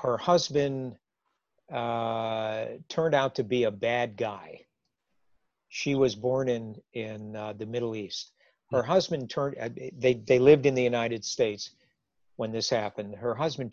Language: English